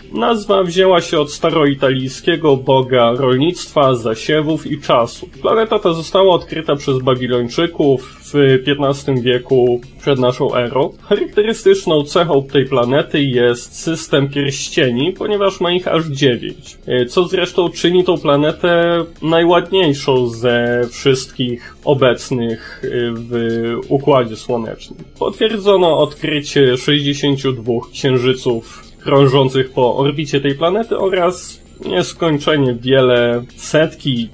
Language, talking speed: Polish, 105 wpm